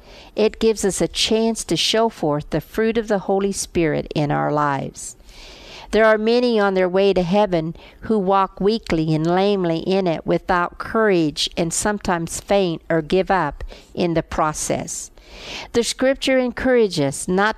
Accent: American